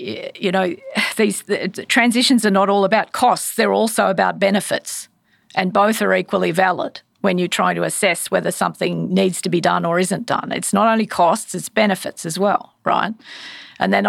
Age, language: 50-69, English